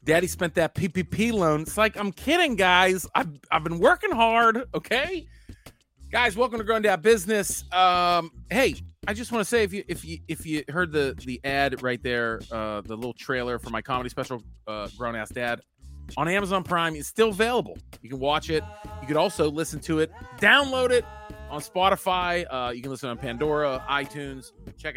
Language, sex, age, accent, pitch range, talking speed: English, male, 30-49, American, 110-180 Hz, 195 wpm